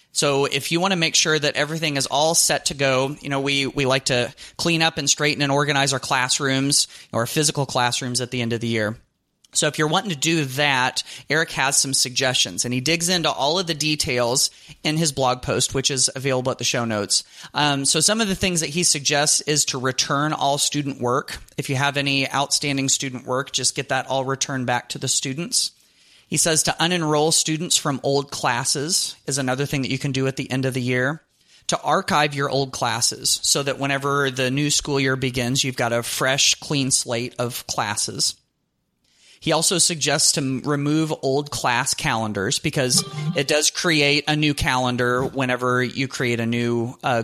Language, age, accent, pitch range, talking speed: English, 30-49, American, 125-150 Hz, 205 wpm